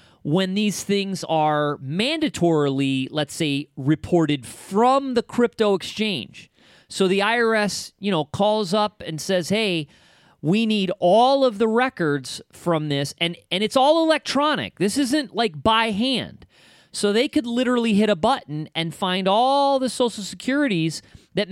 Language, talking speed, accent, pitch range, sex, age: English, 150 wpm, American, 145-215 Hz, male, 40-59